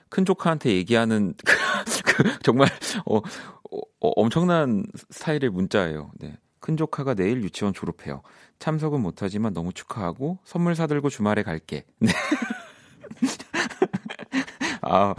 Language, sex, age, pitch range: Korean, male, 40-59, 95-150 Hz